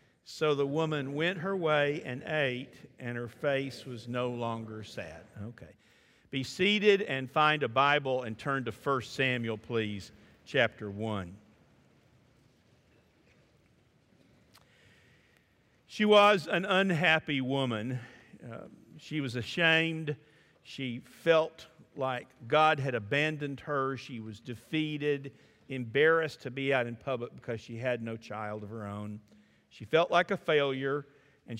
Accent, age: American, 50-69